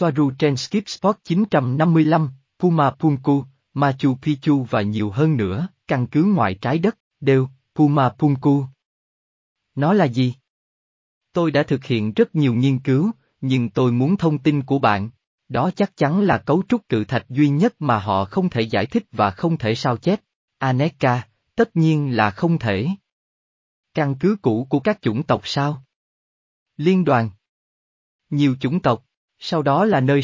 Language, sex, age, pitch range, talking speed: Vietnamese, male, 20-39, 120-160 Hz, 165 wpm